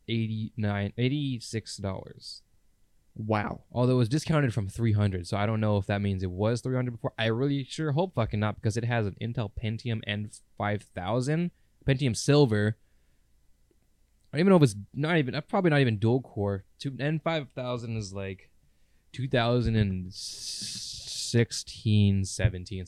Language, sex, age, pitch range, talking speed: English, male, 20-39, 100-135 Hz, 140 wpm